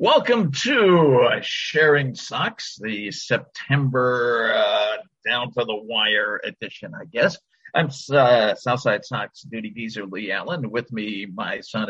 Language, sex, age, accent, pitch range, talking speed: English, male, 50-69, American, 115-145 Hz, 120 wpm